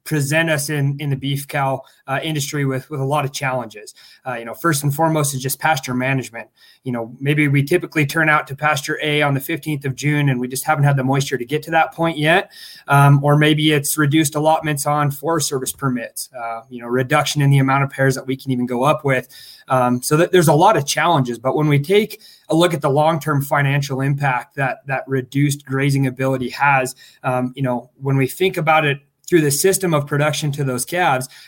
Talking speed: 230 wpm